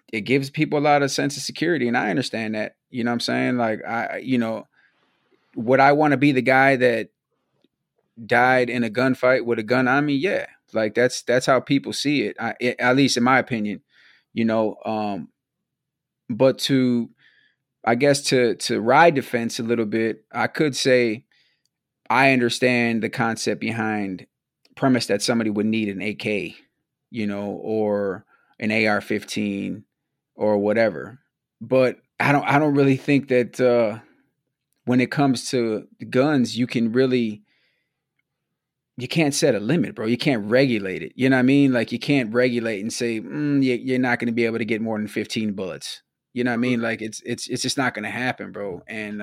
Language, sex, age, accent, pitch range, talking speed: English, male, 30-49, American, 110-130 Hz, 190 wpm